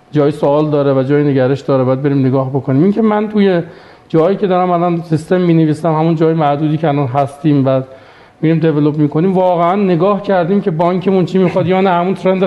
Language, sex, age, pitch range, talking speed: Persian, male, 40-59, 150-195 Hz, 210 wpm